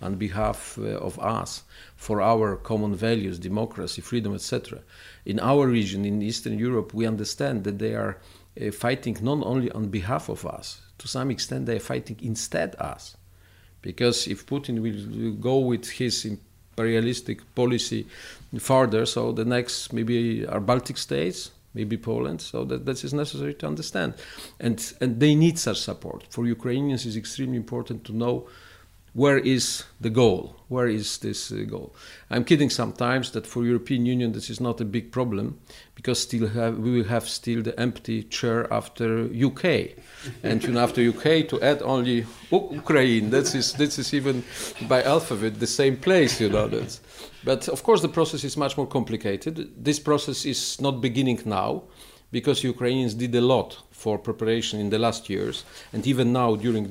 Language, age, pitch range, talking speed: English, 50-69, 110-125 Hz, 170 wpm